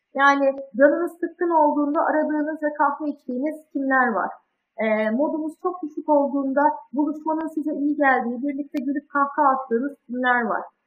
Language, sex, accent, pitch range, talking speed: Turkish, female, native, 250-300 Hz, 145 wpm